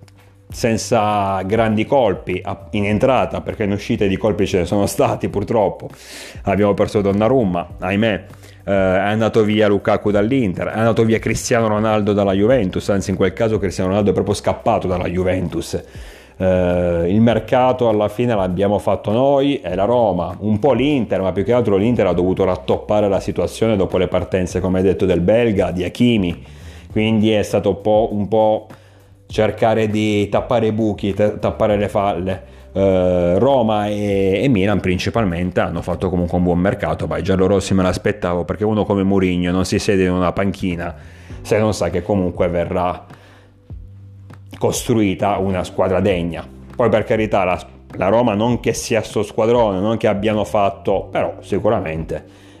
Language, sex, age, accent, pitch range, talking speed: Italian, male, 30-49, native, 90-110 Hz, 165 wpm